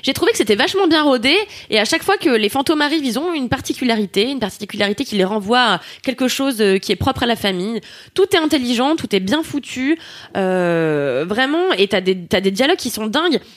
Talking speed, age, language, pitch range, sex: 225 wpm, 20-39, French, 195-275 Hz, female